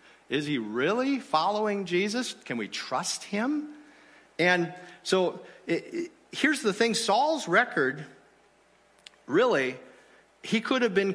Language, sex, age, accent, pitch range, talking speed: English, male, 50-69, American, 150-205 Hz, 115 wpm